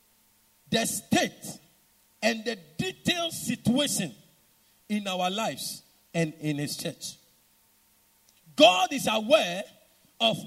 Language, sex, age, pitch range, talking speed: English, male, 50-69, 190-270 Hz, 95 wpm